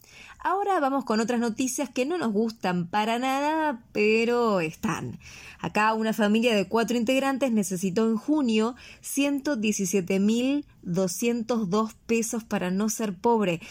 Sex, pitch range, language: female, 185-235 Hz, English